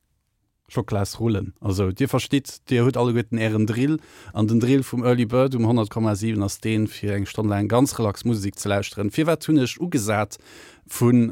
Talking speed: 180 wpm